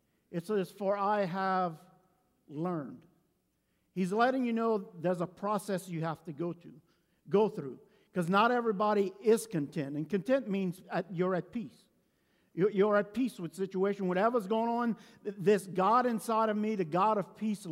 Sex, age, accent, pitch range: male, 50-69, American, 180-215 Hz